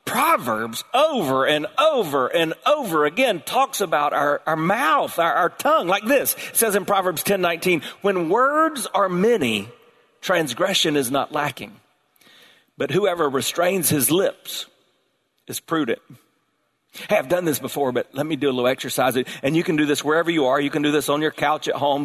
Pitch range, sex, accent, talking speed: 145-185 Hz, male, American, 180 wpm